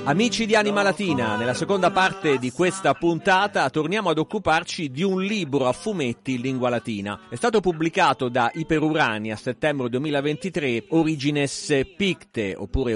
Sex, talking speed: male, 150 wpm